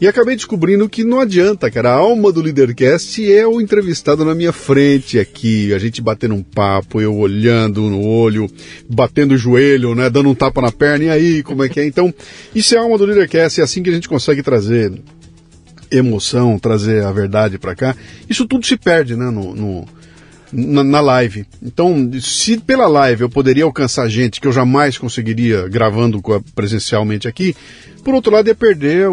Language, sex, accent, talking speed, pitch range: Portuguese, male, Brazilian, 185 wpm, 110-165 Hz